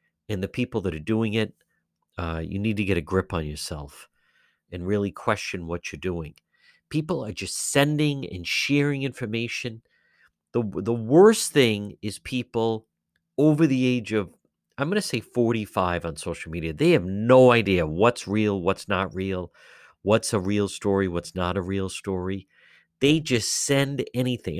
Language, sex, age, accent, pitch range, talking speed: English, male, 50-69, American, 95-140 Hz, 170 wpm